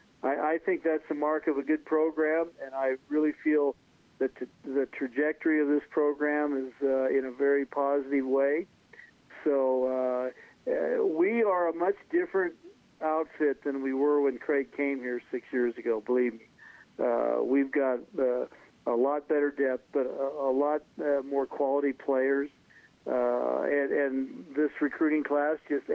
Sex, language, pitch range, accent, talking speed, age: male, English, 135-170 Hz, American, 165 wpm, 50-69